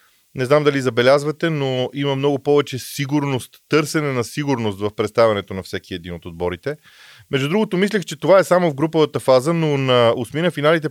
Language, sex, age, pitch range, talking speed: Bulgarian, male, 30-49, 120-155 Hz, 180 wpm